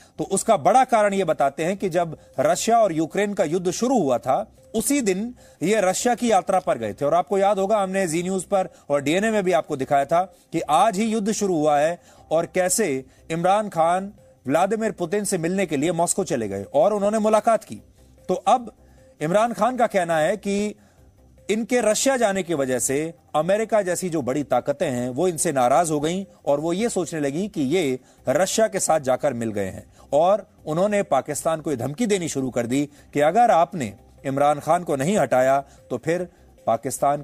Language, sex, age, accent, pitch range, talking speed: English, male, 30-49, Indian, 140-205 Hz, 200 wpm